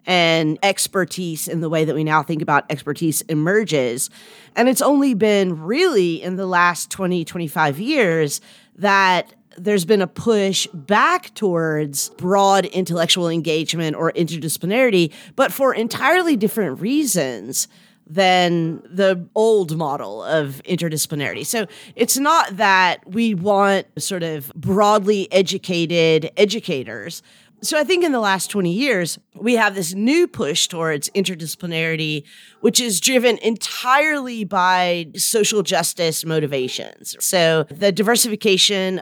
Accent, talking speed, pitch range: American, 130 wpm, 165-215 Hz